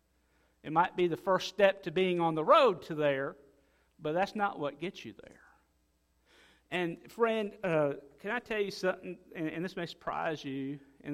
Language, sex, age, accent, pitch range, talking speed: English, male, 40-59, American, 135-205 Hz, 190 wpm